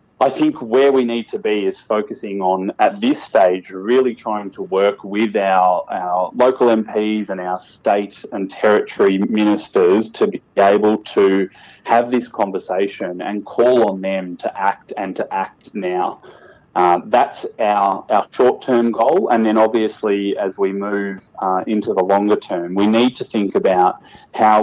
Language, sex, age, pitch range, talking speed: English, male, 20-39, 95-110 Hz, 165 wpm